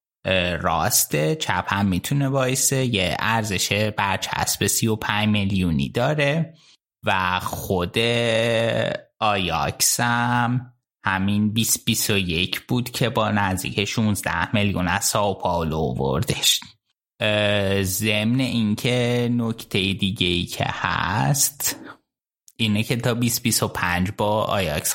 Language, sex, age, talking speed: Persian, male, 20-39, 95 wpm